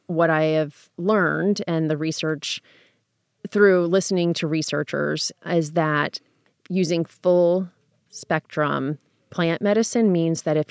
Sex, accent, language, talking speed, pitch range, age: female, American, English, 120 wpm, 145-170 Hz, 30-49